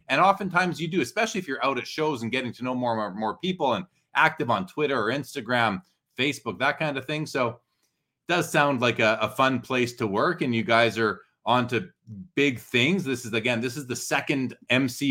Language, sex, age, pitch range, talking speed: English, male, 30-49, 115-145 Hz, 220 wpm